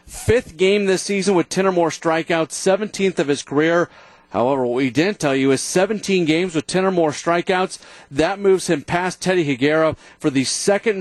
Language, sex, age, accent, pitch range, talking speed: English, male, 40-59, American, 140-180 Hz, 195 wpm